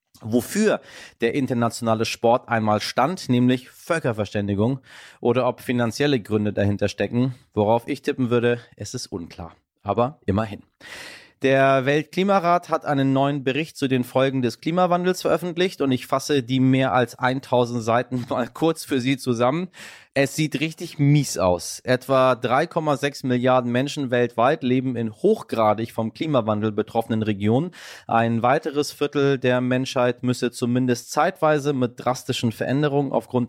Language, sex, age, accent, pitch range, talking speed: German, male, 30-49, German, 115-135 Hz, 140 wpm